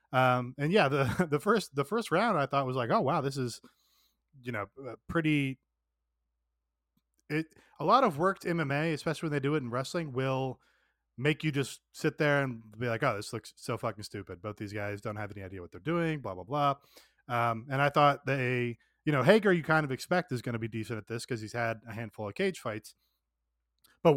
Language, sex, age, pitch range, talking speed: English, male, 20-39, 115-150 Hz, 220 wpm